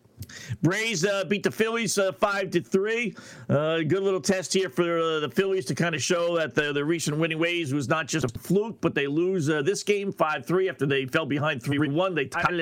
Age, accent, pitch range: 50-69, American, 135-185 Hz